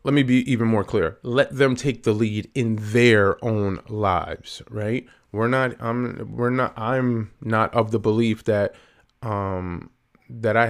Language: English